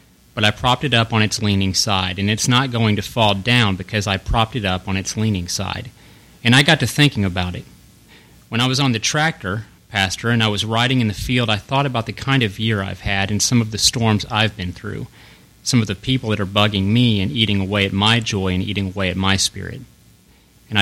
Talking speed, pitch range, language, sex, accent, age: 240 wpm, 100-125 Hz, English, male, American, 30-49